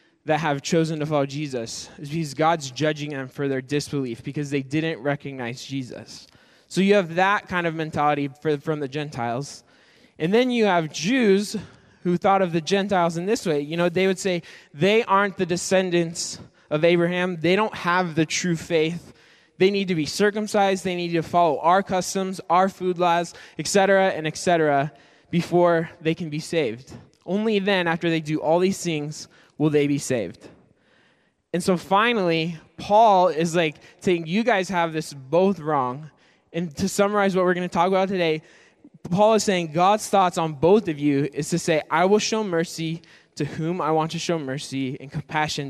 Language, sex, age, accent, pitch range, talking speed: English, male, 20-39, American, 150-185 Hz, 185 wpm